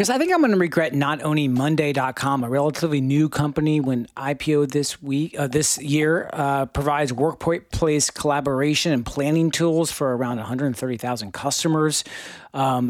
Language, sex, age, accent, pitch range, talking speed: English, male, 40-59, American, 140-170 Hz, 145 wpm